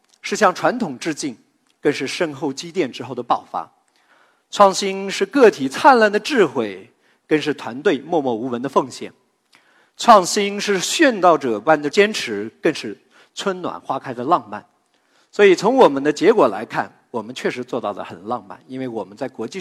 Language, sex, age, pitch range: Chinese, male, 50-69, 125-185 Hz